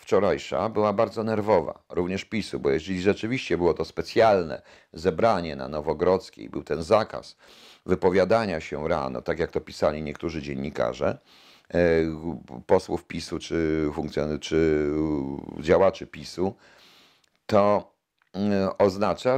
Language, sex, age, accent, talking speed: Polish, male, 50-69, native, 110 wpm